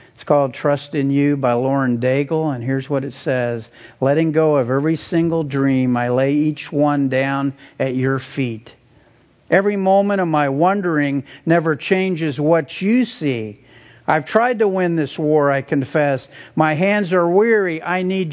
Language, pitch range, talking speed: English, 125-170 Hz, 165 wpm